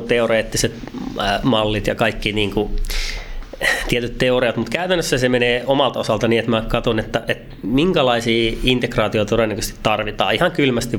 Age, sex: 30-49, male